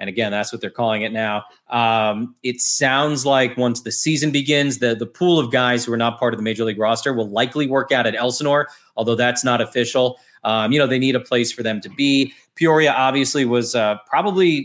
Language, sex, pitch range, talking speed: English, male, 115-140 Hz, 230 wpm